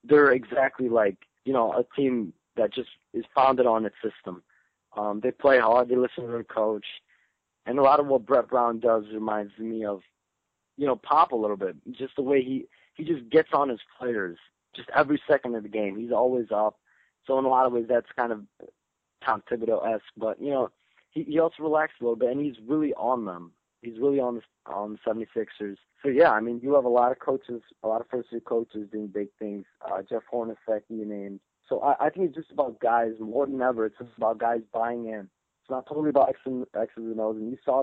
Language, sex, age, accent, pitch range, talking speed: English, male, 30-49, American, 110-135 Hz, 230 wpm